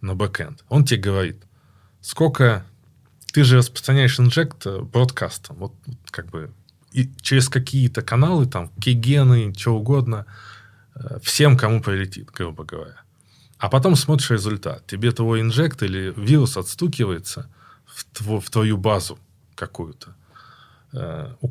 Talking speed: 115 wpm